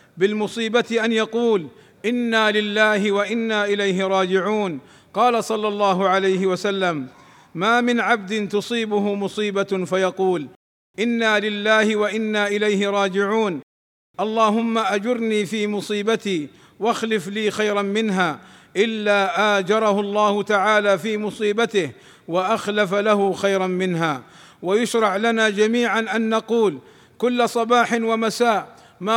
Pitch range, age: 200-225 Hz, 50-69